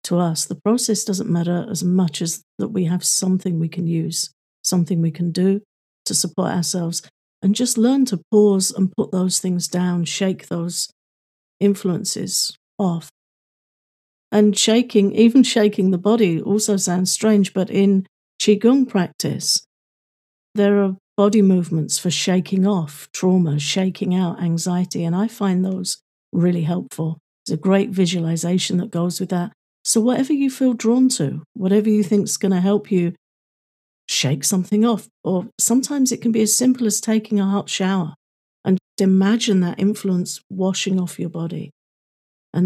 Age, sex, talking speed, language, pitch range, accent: 50-69, female, 160 wpm, English, 175-210 Hz, British